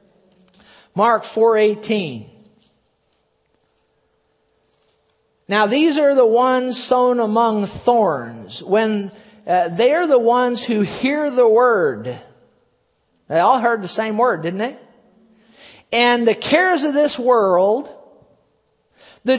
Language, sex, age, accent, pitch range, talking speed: English, male, 50-69, American, 200-260 Hz, 110 wpm